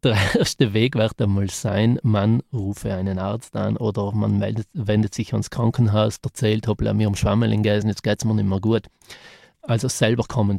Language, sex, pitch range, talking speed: German, male, 105-120 Hz, 200 wpm